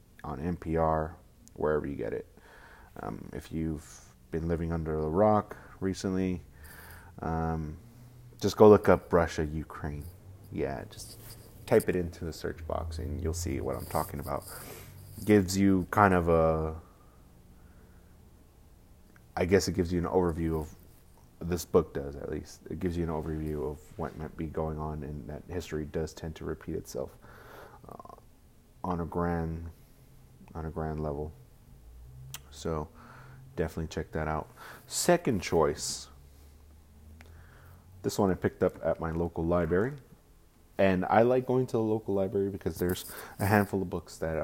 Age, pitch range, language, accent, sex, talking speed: 30-49, 80-95 Hz, English, American, male, 155 wpm